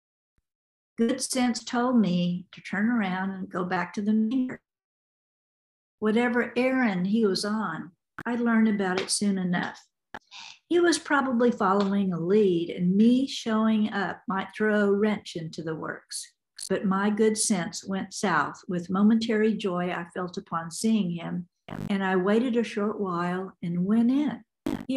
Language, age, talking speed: English, 50-69, 155 wpm